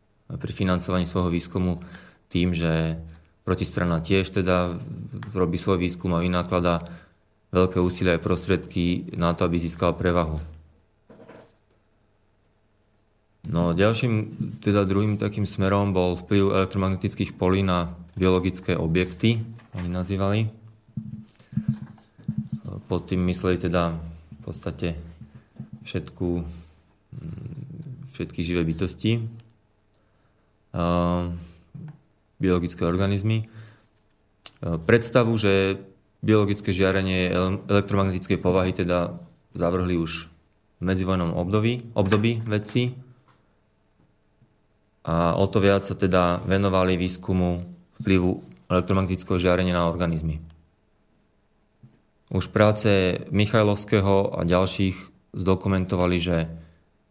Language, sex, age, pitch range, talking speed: Slovak, male, 30-49, 90-105 Hz, 90 wpm